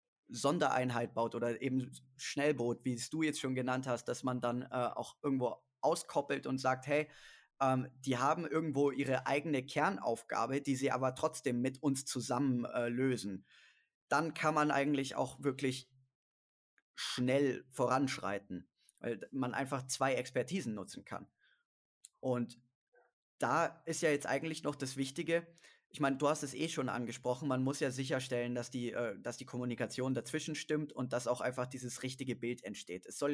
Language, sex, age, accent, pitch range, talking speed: English, male, 20-39, German, 125-145 Hz, 160 wpm